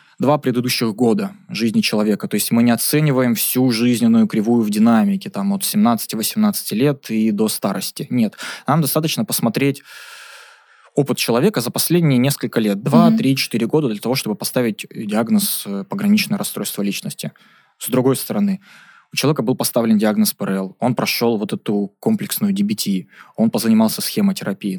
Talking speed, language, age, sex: 145 wpm, Russian, 20-39, male